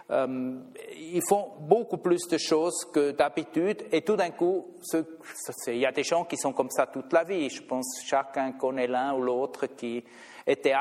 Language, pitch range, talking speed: French, 135-175 Hz, 200 wpm